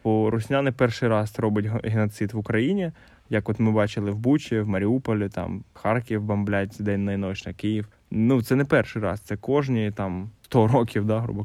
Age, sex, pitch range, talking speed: 10-29, male, 105-120 Hz, 190 wpm